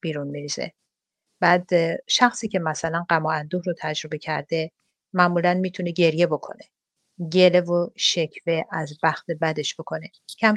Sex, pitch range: female, 165-220 Hz